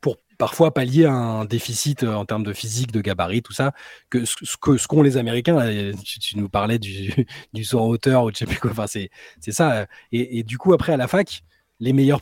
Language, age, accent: French, 20-39, French